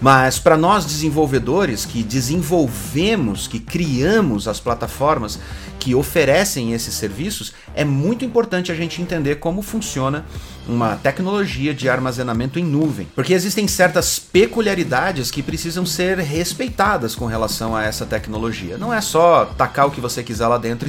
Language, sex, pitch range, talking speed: Portuguese, male, 115-170 Hz, 145 wpm